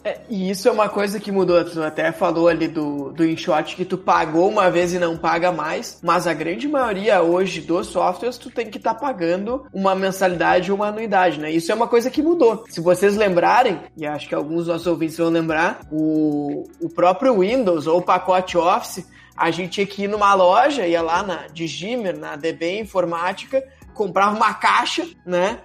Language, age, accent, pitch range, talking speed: Portuguese, 20-39, Brazilian, 170-215 Hz, 200 wpm